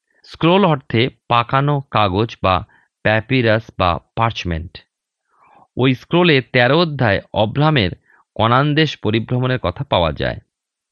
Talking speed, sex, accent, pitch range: 100 wpm, male, native, 105-145 Hz